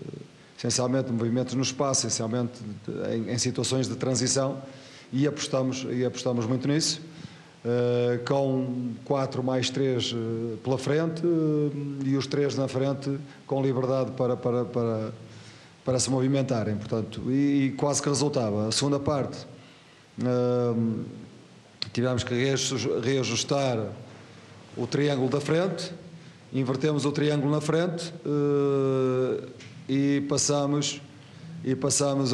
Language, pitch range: Portuguese, 120-145 Hz